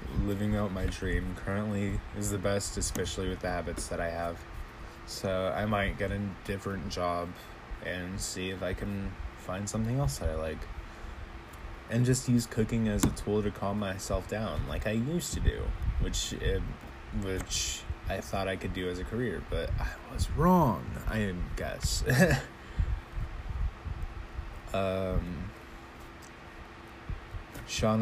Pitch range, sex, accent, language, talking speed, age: 85-105 Hz, male, American, English, 145 wpm, 20-39